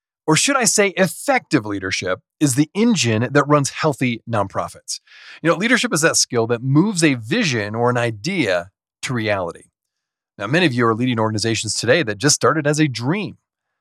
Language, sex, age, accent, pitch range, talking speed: English, male, 30-49, American, 115-160 Hz, 180 wpm